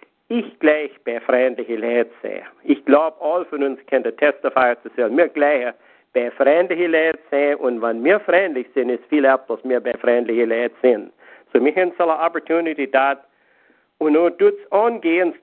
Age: 50-69